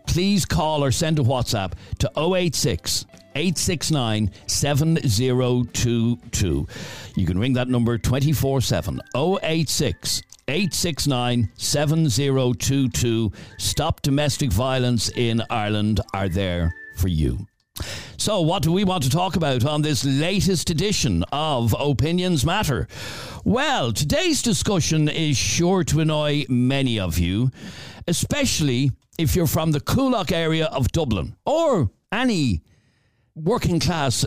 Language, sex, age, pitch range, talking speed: English, male, 60-79, 115-160 Hz, 110 wpm